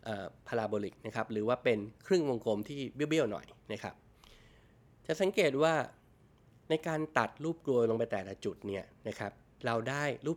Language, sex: Thai, male